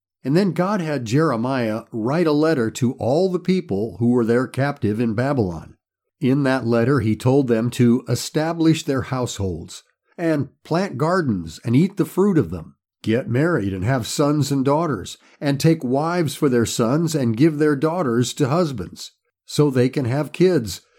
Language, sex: English, male